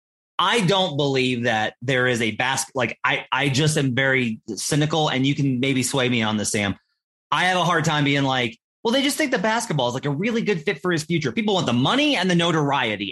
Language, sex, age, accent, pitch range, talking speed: English, male, 30-49, American, 125-170 Hz, 240 wpm